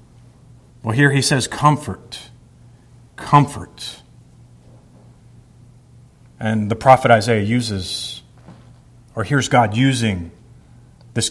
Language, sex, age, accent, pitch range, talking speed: English, male, 40-59, American, 115-135 Hz, 85 wpm